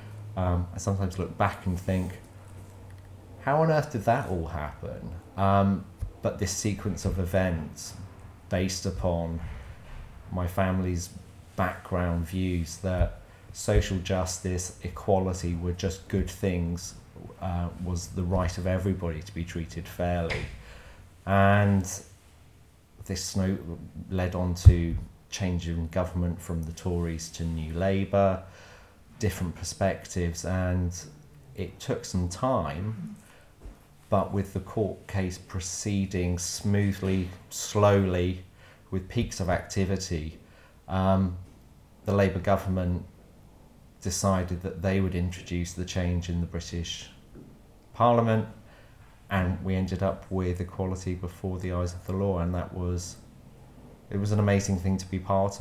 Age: 30-49